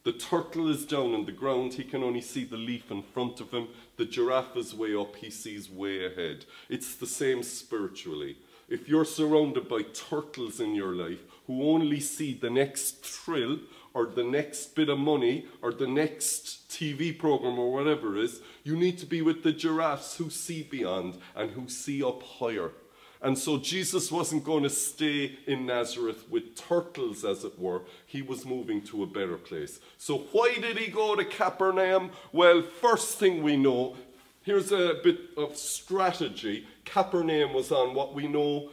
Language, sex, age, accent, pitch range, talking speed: English, male, 30-49, Irish, 130-185 Hz, 185 wpm